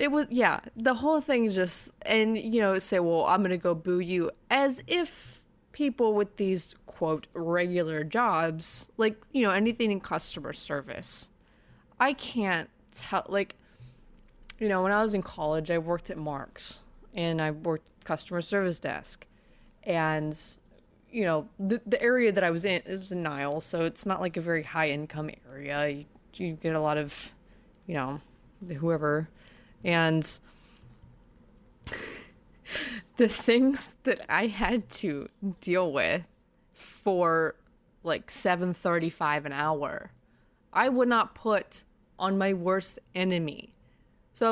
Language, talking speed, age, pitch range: English, 150 wpm, 20-39, 165-220 Hz